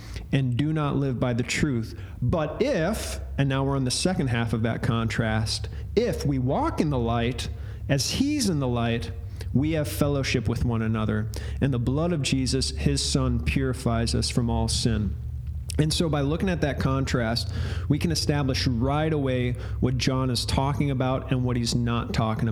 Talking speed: 185 wpm